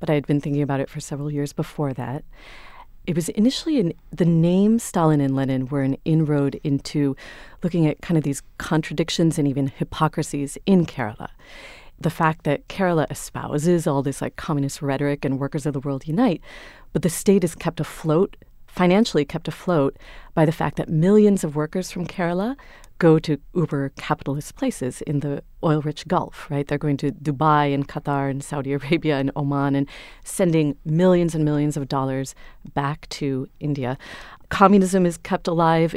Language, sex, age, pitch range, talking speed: English, female, 30-49, 145-175 Hz, 170 wpm